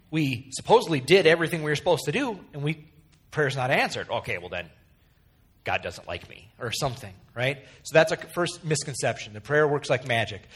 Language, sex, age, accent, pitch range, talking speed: English, male, 40-59, American, 125-195 Hz, 195 wpm